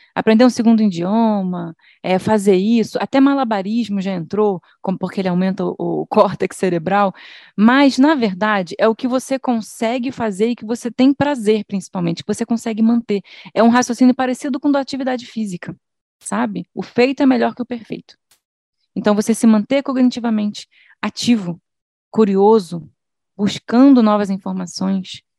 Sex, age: female, 20-39